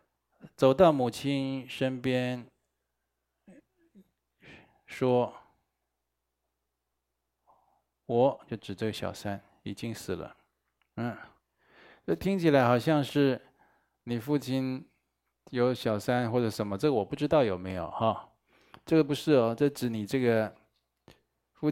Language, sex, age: Chinese, male, 20-39